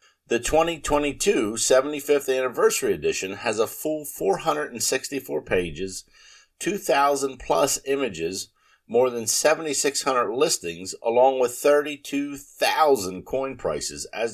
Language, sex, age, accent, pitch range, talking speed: English, male, 50-69, American, 110-160 Hz, 95 wpm